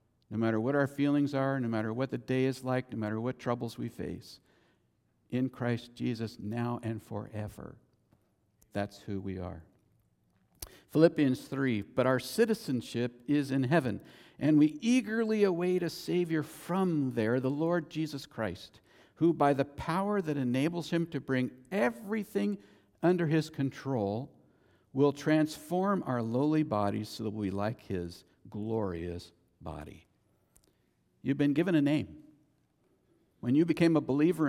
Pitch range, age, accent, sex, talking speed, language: 105-145 Hz, 50-69, American, male, 145 wpm, English